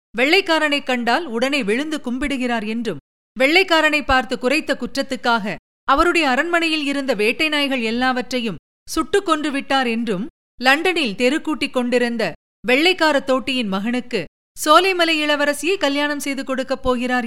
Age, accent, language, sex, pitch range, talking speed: 50-69, native, Tamil, female, 230-300 Hz, 110 wpm